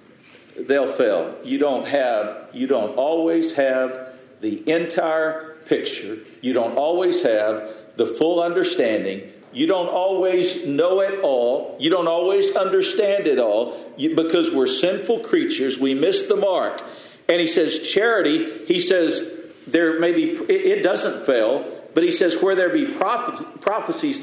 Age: 50-69